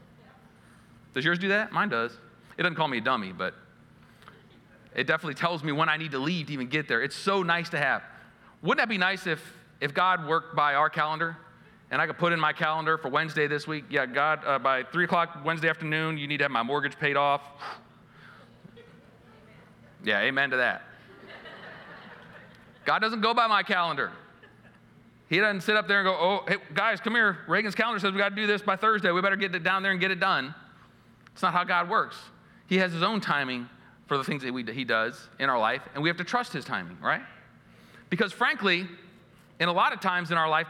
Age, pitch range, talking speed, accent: 40-59, 135-185 Hz, 220 wpm, American